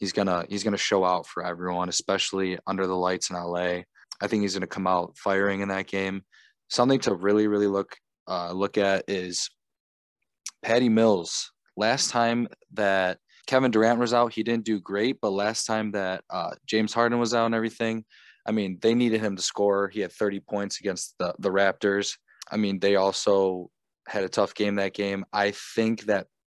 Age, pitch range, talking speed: 20-39, 95-105 Hz, 200 wpm